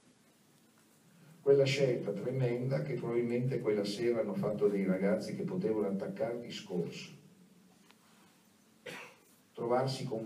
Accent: native